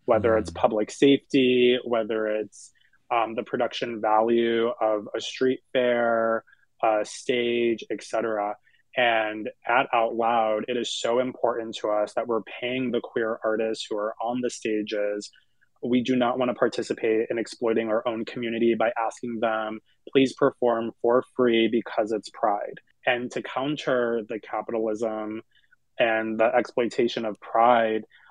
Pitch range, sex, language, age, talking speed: 110-125 Hz, male, English, 20-39, 145 wpm